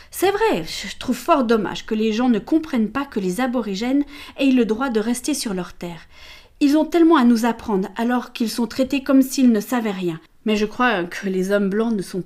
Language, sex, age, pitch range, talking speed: French, female, 40-59, 195-265 Hz, 235 wpm